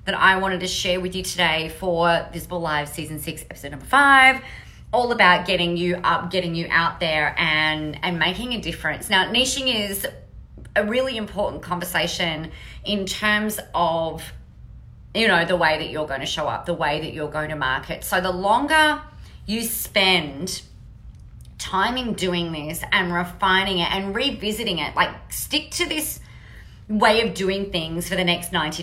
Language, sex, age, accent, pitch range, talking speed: English, female, 30-49, Australian, 165-205 Hz, 175 wpm